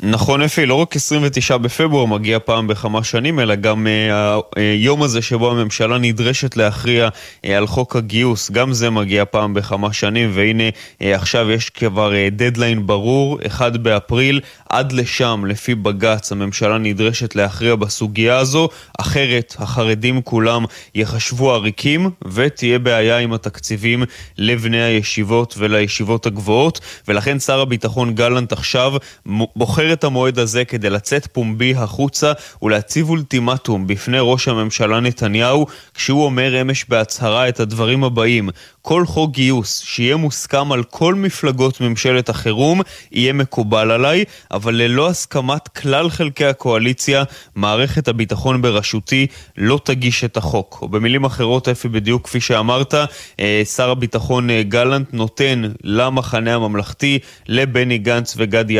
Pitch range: 110-130 Hz